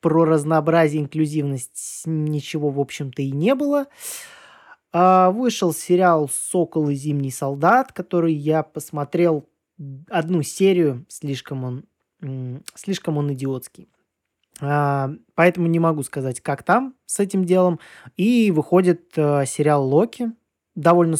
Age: 20-39